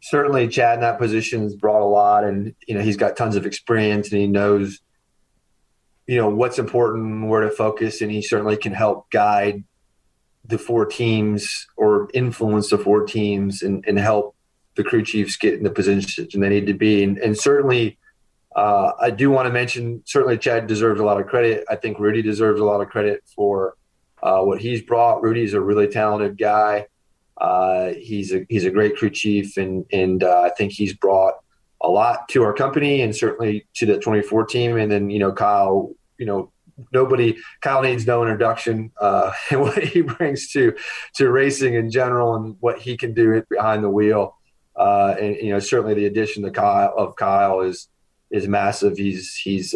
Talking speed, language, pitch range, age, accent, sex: 195 wpm, English, 100-115 Hz, 30-49, American, male